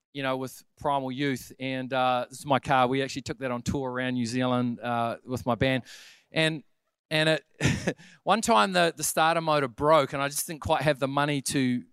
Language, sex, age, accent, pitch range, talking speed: English, male, 40-59, Australian, 130-160 Hz, 215 wpm